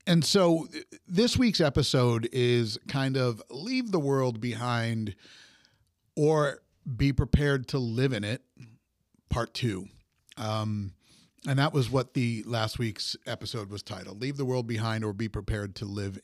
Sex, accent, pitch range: male, American, 105-135 Hz